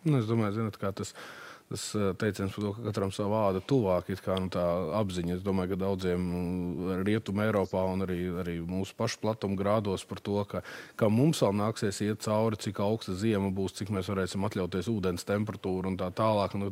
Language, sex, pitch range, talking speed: English, male, 90-110 Hz, 190 wpm